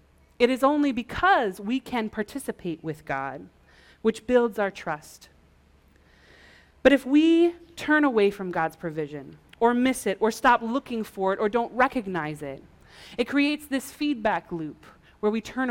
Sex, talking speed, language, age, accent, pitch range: female, 155 wpm, English, 30-49, American, 155-230 Hz